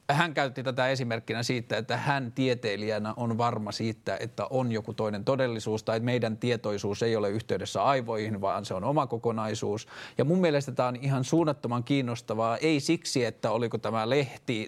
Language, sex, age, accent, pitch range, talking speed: Finnish, male, 30-49, native, 110-135 Hz, 170 wpm